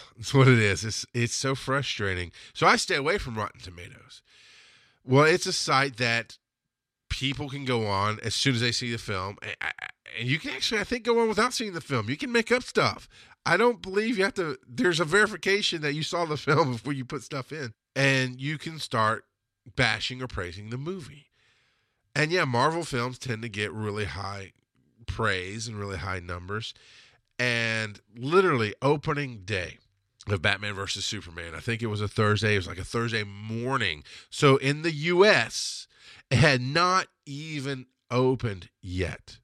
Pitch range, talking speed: 105-155 Hz, 185 wpm